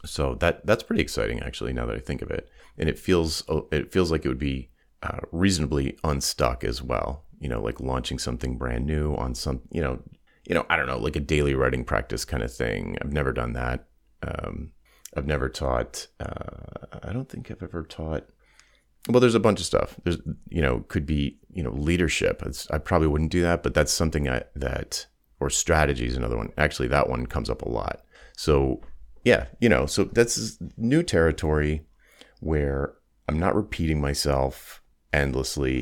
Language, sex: English, male